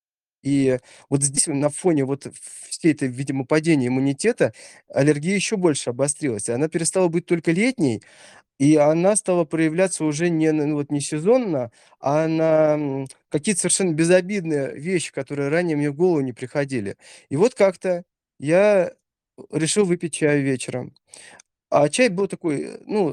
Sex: male